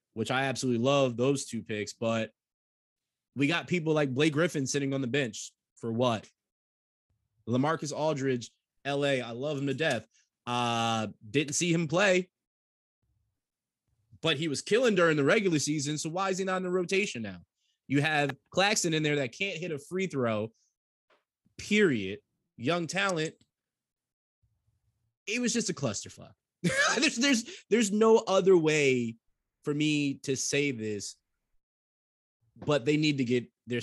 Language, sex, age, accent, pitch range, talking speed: English, male, 20-39, American, 105-145 Hz, 155 wpm